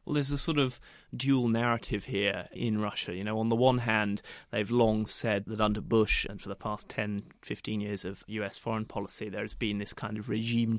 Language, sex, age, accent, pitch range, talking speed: English, male, 30-49, British, 105-115 Hz, 220 wpm